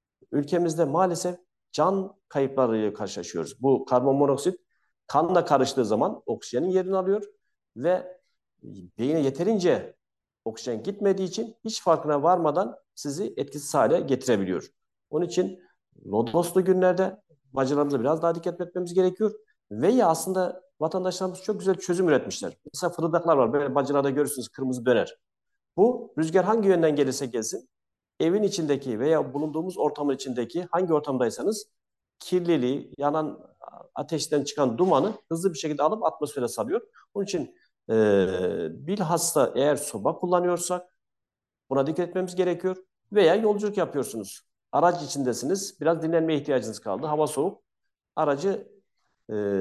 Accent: native